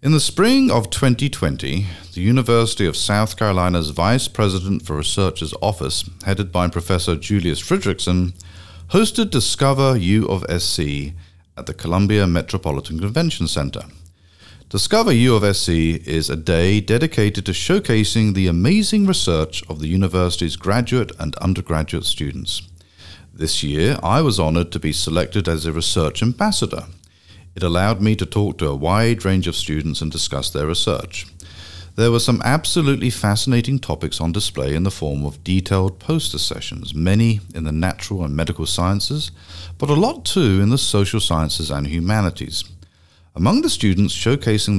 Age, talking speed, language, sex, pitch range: 40-59, 155 wpm, English, male, 80-105 Hz